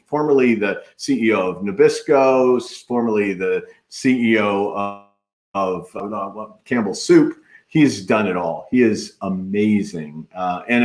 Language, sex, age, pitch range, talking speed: English, male, 40-59, 105-150 Hz, 110 wpm